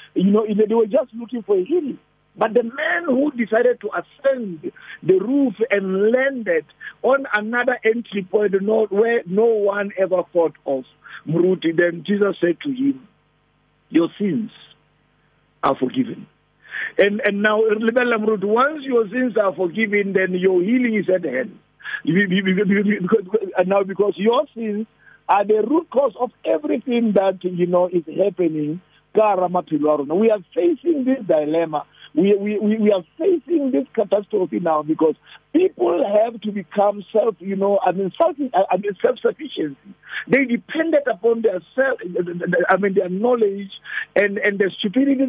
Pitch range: 185-245 Hz